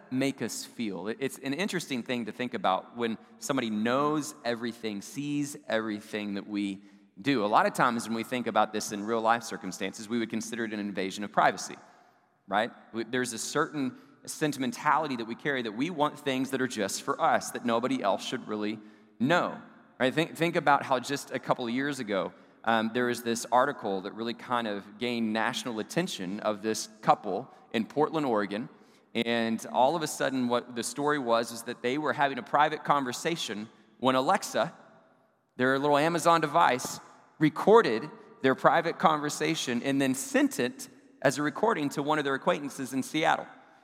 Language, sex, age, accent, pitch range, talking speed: English, male, 30-49, American, 115-145 Hz, 180 wpm